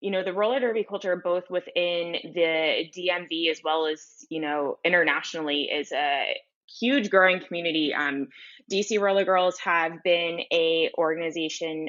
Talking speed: 145 wpm